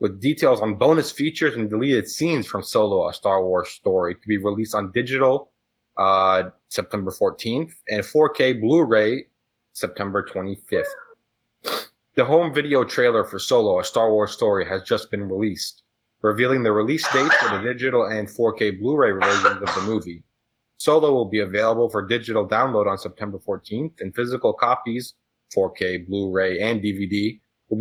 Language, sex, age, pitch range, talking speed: English, male, 30-49, 105-130 Hz, 160 wpm